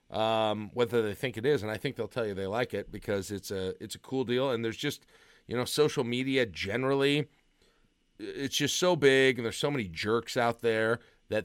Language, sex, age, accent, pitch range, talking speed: English, male, 40-59, American, 100-125 Hz, 220 wpm